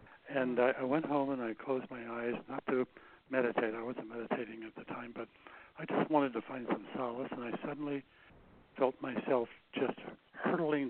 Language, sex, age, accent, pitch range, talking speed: English, male, 60-79, American, 125-145 Hz, 180 wpm